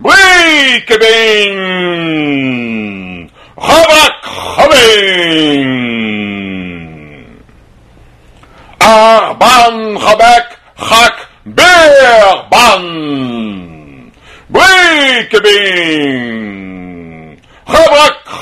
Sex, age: male, 60-79